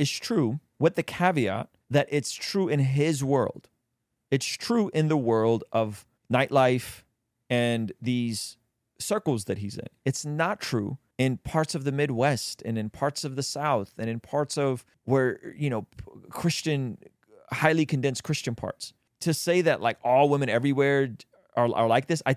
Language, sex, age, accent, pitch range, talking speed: English, male, 30-49, American, 115-150 Hz, 165 wpm